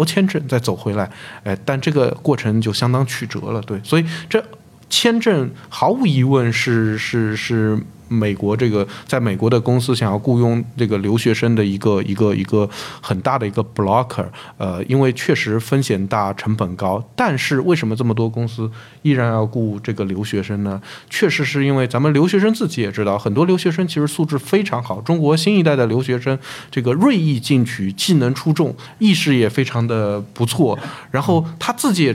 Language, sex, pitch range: Chinese, male, 110-160 Hz